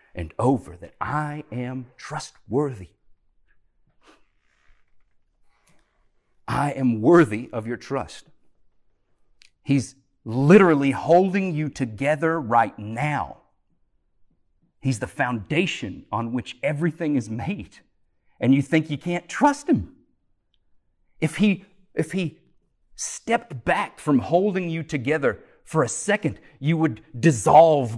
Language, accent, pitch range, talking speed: English, American, 110-150 Hz, 105 wpm